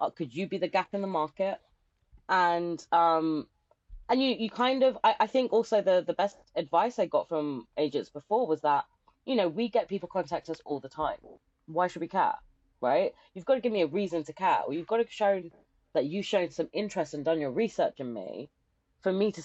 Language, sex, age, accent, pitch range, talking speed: English, female, 20-39, British, 155-210 Hz, 230 wpm